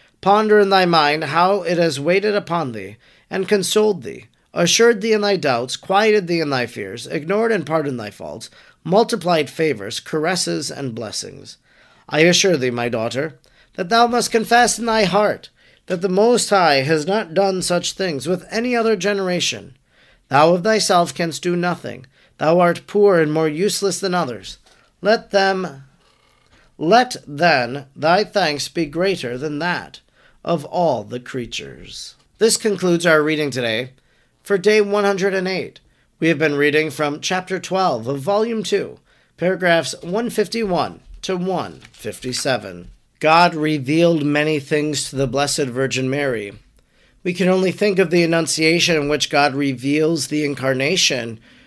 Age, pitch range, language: 40-59, 140-195 Hz, English